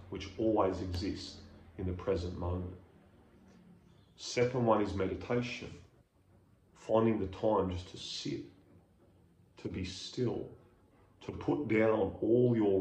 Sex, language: male, English